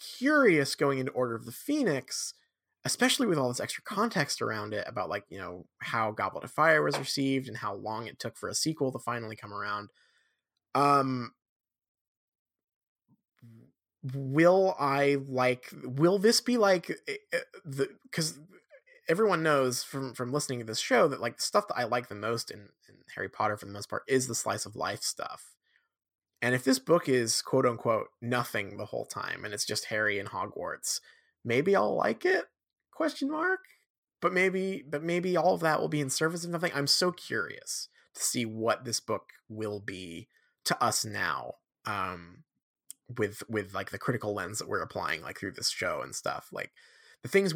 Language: English